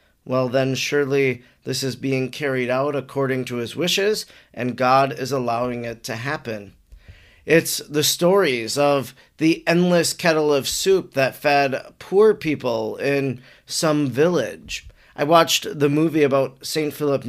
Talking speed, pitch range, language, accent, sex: 145 wpm, 130-155 Hz, English, American, male